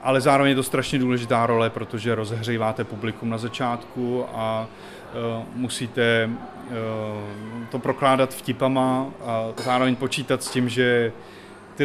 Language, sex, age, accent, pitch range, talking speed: Czech, male, 20-39, native, 115-135 Hz, 130 wpm